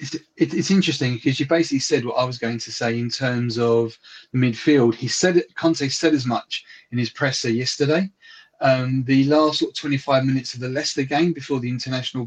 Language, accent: English, British